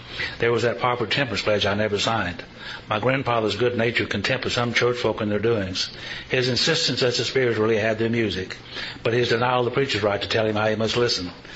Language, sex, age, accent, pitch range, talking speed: English, male, 60-79, American, 100-115 Hz, 230 wpm